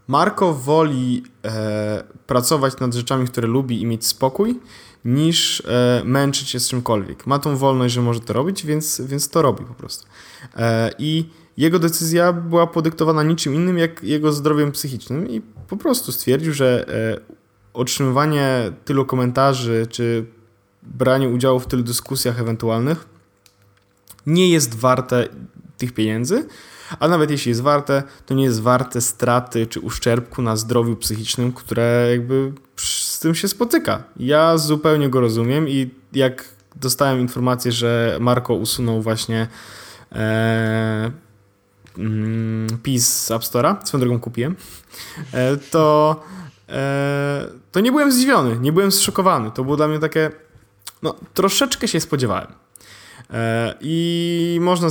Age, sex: 10-29, male